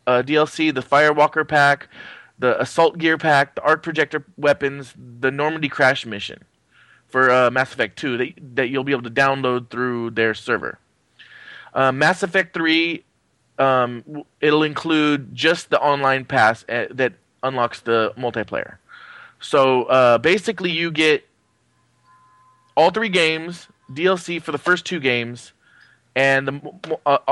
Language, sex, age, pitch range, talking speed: English, male, 20-39, 125-155 Hz, 140 wpm